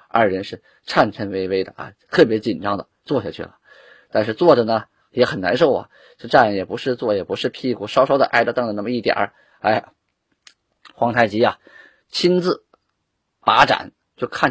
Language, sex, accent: Chinese, male, native